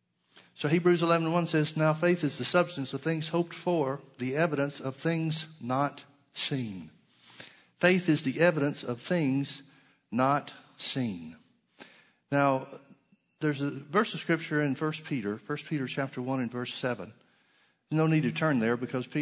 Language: English